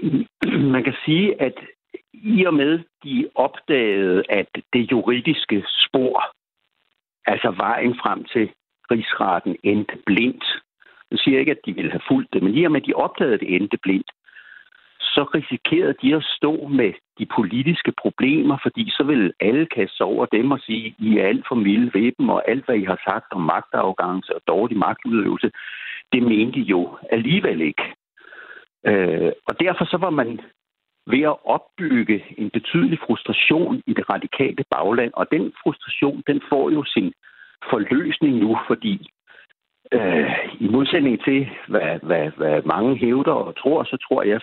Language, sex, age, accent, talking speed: Danish, male, 60-79, native, 165 wpm